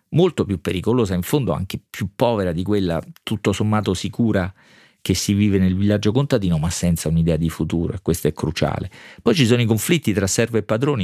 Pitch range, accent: 95-120 Hz, native